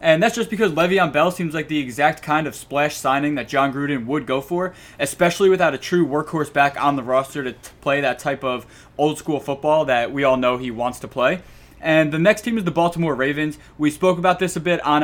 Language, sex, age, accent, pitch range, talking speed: English, male, 20-39, American, 135-170 Hz, 240 wpm